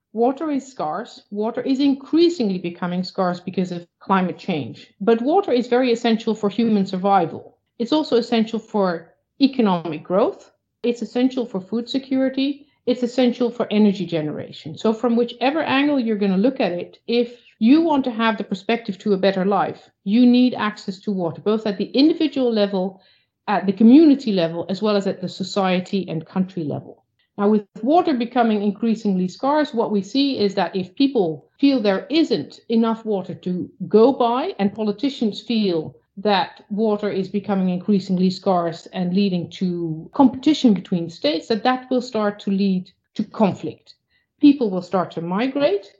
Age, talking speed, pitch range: 50-69, 170 wpm, 185-245 Hz